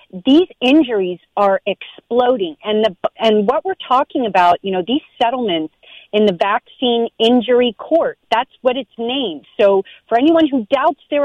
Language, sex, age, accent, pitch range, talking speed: English, female, 40-59, American, 205-295 Hz, 160 wpm